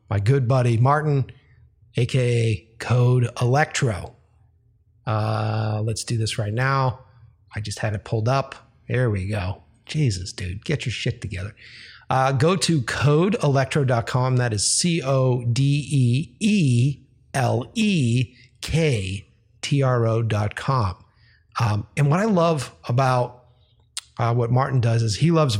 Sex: male